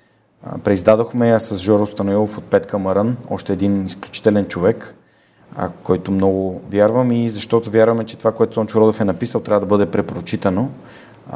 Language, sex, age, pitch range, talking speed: Bulgarian, male, 30-49, 100-115 Hz, 150 wpm